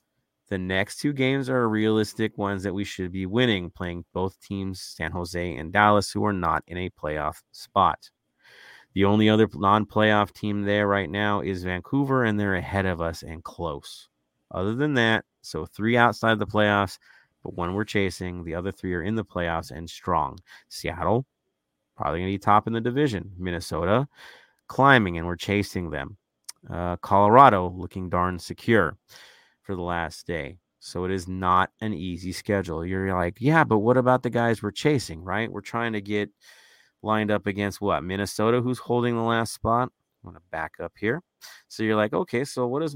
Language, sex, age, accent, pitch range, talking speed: English, male, 30-49, American, 90-110 Hz, 185 wpm